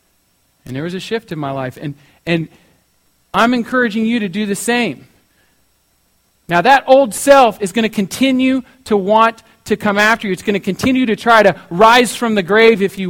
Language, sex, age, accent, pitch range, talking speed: English, male, 40-59, American, 130-205 Hz, 200 wpm